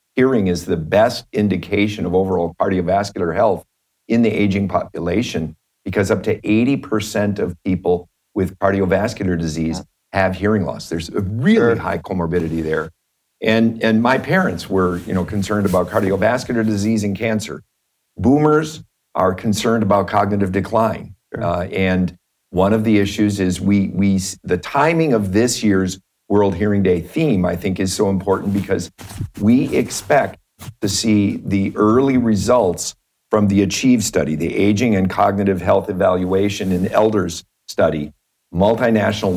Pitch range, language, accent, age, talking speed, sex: 95-110 Hz, English, American, 50-69, 145 wpm, male